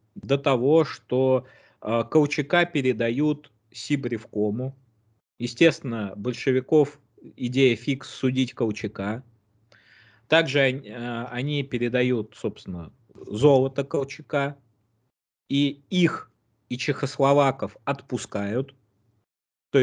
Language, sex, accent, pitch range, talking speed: Russian, male, native, 110-140 Hz, 80 wpm